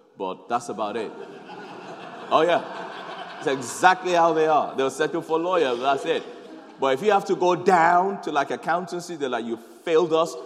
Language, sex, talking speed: English, male, 190 wpm